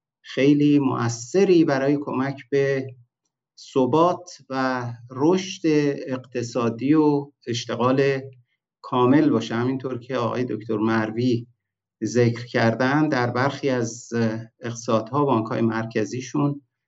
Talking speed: 90 wpm